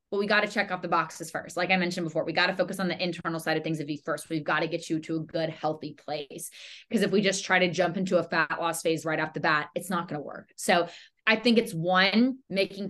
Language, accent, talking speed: English, American, 295 wpm